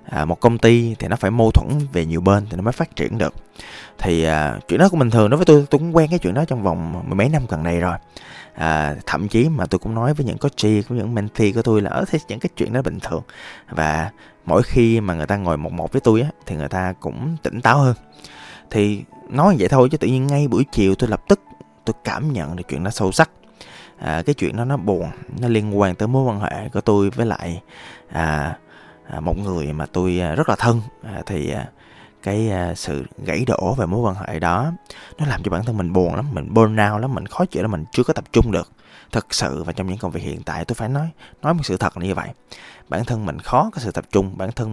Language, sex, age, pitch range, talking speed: Vietnamese, male, 20-39, 90-125 Hz, 255 wpm